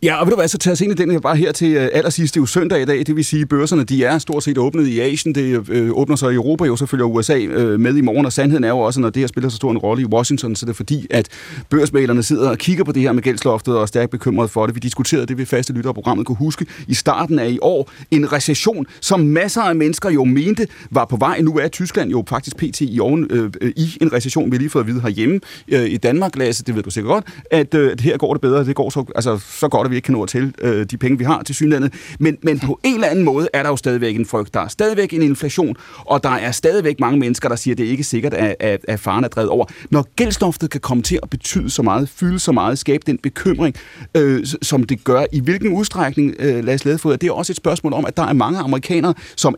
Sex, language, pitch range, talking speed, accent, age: male, Danish, 125-160 Hz, 285 wpm, native, 30-49